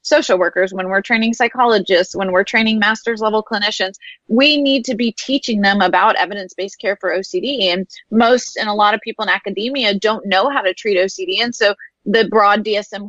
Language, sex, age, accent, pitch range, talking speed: English, female, 20-39, American, 195-235 Hz, 195 wpm